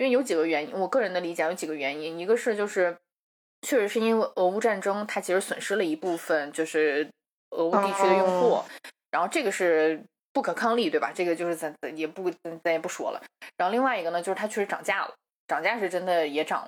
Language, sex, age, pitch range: Chinese, female, 20-39, 165-220 Hz